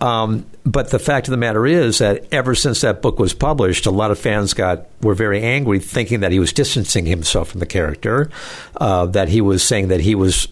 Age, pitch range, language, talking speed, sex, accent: 60-79, 100-135 Hz, English, 230 wpm, male, American